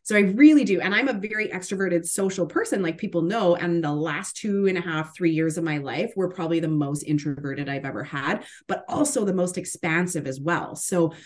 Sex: female